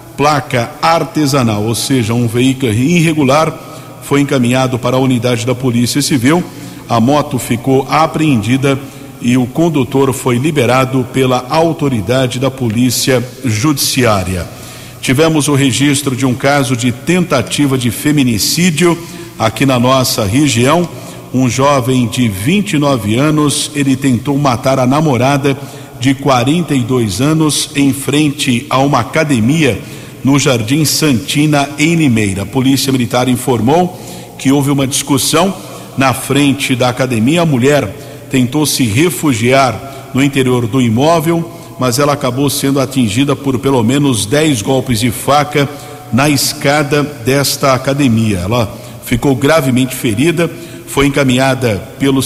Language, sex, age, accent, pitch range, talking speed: Portuguese, male, 50-69, Brazilian, 125-145 Hz, 125 wpm